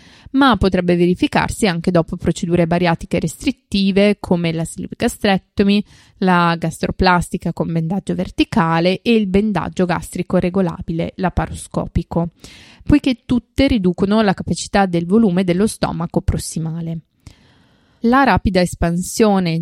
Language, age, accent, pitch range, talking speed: Italian, 20-39, native, 170-210 Hz, 105 wpm